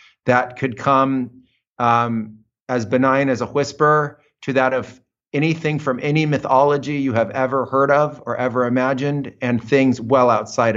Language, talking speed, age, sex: English, 155 wpm, 30-49, male